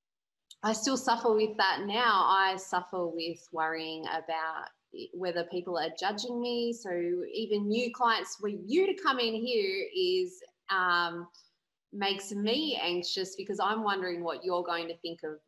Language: English